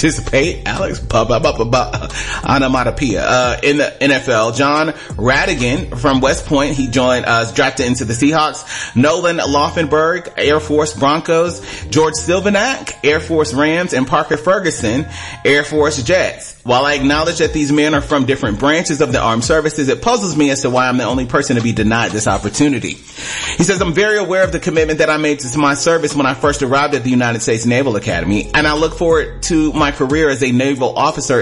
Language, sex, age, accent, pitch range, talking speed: English, male, 30-49, American, 125-155 Hz, 195 wpm